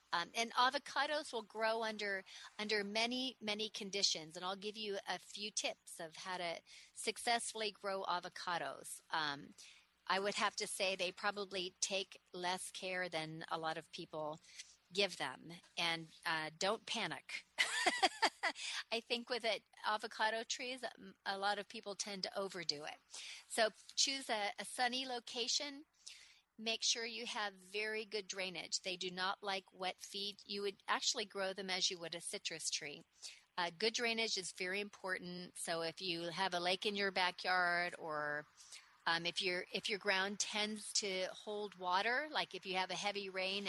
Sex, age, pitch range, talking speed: female, 40-59, 180-220 Hz, 170 wpm